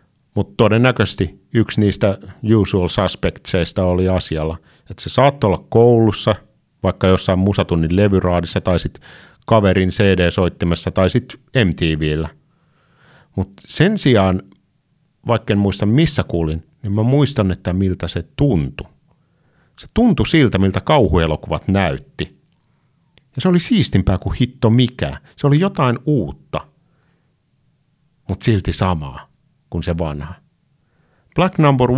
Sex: male